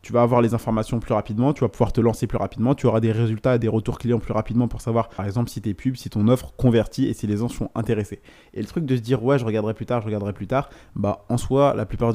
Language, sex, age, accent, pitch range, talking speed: French, male, 20-39, French, 105-120 Hz, 300 wpm